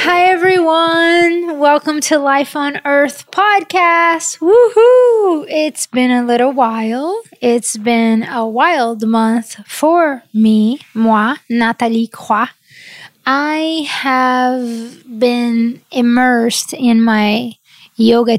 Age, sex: 20-39, female